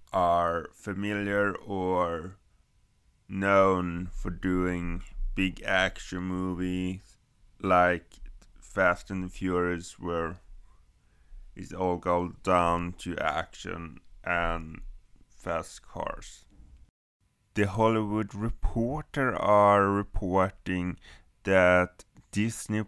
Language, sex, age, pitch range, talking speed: English, male, 20-39, 90-105 Hz, 80 wpm